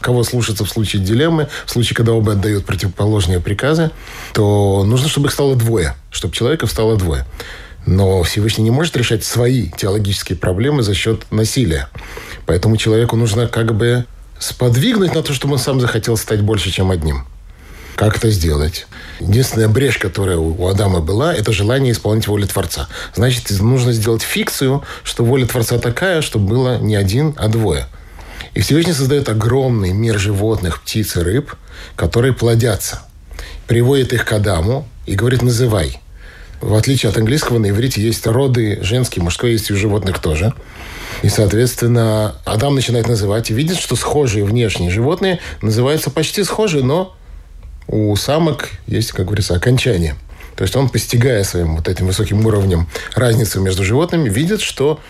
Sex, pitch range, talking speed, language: male, 95-125 Hz, 155 wpm, Russian